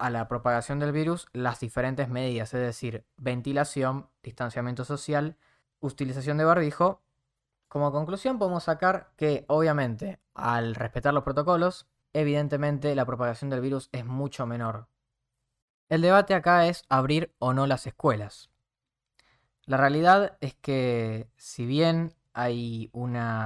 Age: 20-39